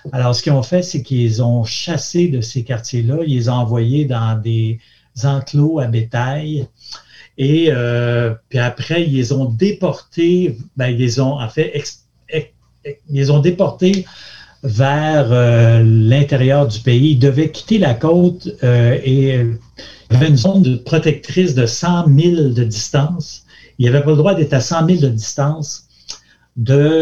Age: 60-79